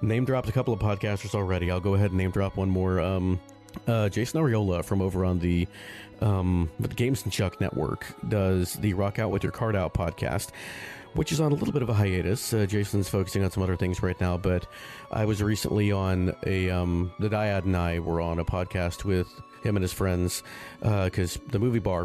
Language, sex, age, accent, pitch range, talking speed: English, male, 40-59, American, 90-110 Hz, 220 wpm